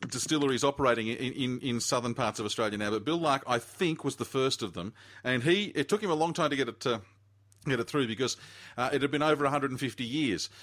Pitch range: 105-130 Hz